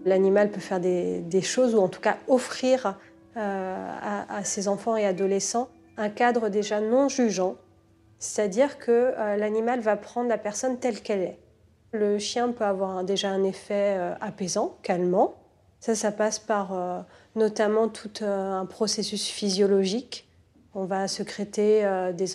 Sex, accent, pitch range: female, French, 190-225 Hz